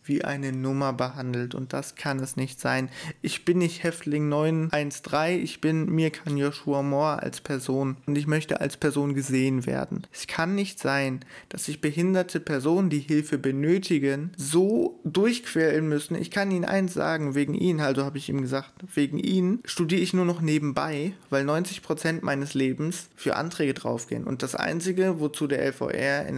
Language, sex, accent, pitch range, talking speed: German, male, German, 135-165 Hz, 175 wpm